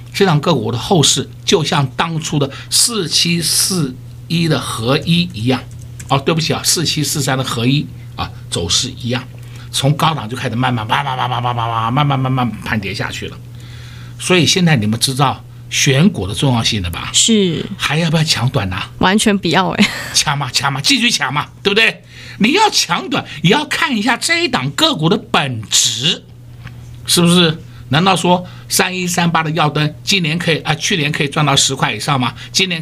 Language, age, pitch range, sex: Chinese, 60-79, 120-175 Hz, male